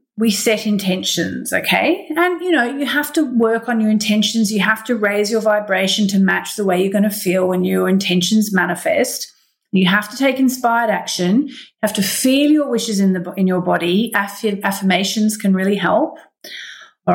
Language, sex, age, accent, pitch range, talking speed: English, female, 40-59, Australian, 190-245 Hz, 190 wpm